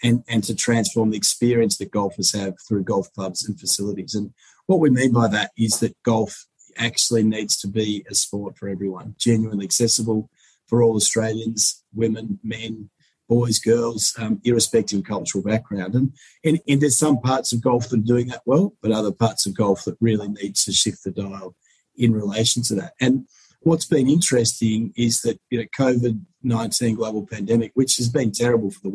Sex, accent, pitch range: male, Australian, 105-120 Hz